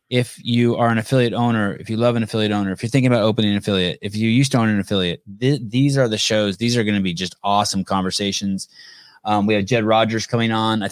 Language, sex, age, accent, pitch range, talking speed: English, male, 30-49, American, 95-115 Hz, 260 wpm